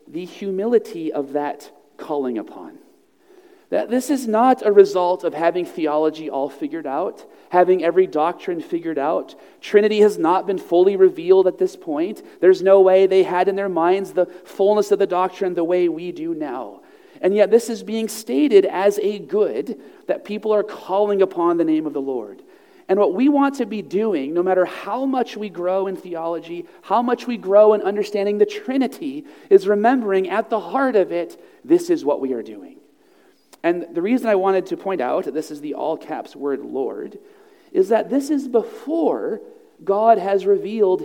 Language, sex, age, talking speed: English, male, 40-59, 185 wpm